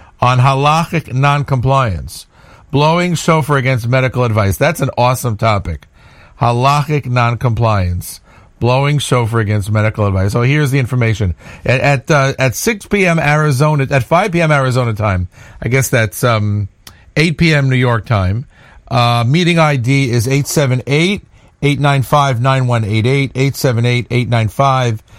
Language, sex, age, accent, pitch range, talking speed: English, male, 50-69, American, 105-140 Hz, 125 wpm